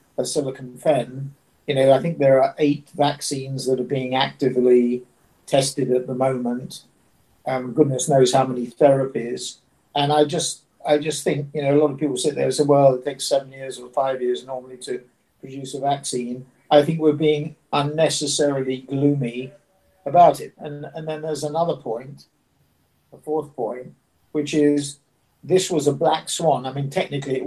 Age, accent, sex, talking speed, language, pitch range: 50-69, British, male, 175 wpm, English, 130-150 Hz